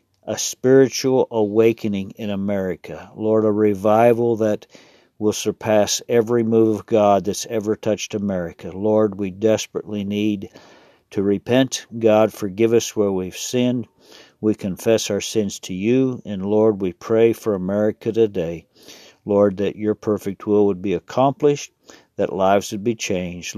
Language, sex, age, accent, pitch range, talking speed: English, male, 50-69, American, 100-115 Hz, 145 wpm